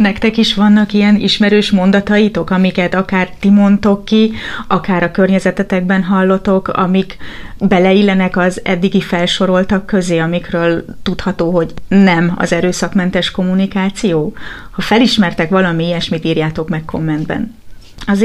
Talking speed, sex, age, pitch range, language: 120 wpm, female, 30-49, 170-200 Hz, Hungarian